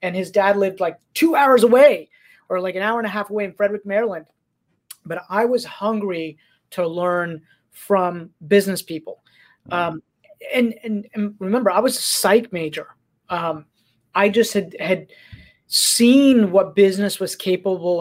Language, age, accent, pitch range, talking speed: English, 30-49, American, 165-205 Hz, 160 wpm